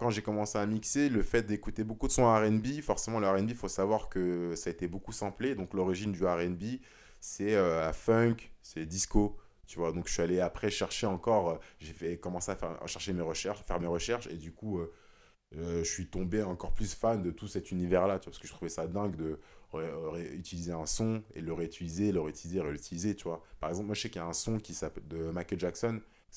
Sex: male